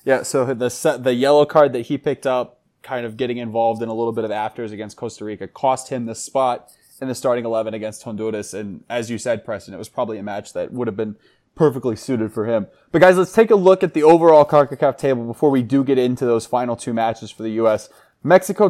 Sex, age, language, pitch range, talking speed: male, 20-39, English, 115-150 Hz, 240 wpm